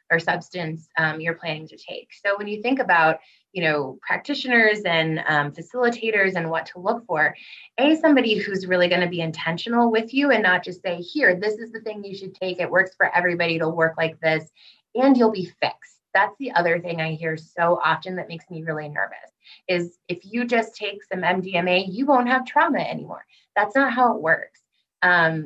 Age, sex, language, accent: 20-39, female, English, American